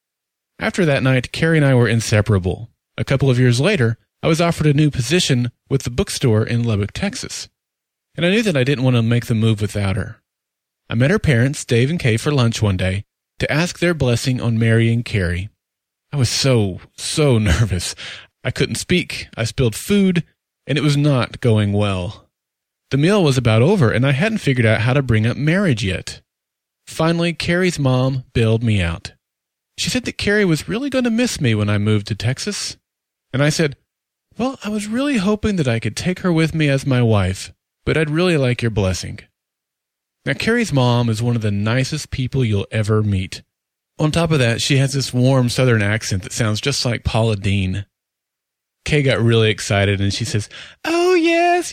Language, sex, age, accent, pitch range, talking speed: English, male, 30-49, American, 110-160 Hz, 200 wpm